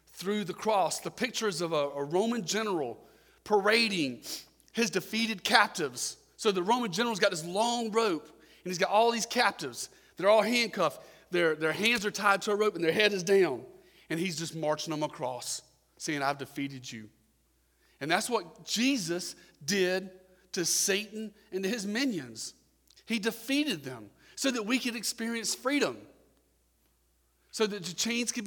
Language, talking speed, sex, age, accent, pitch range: English, 165 wpm, male, 40-59, American, 135-210 Hz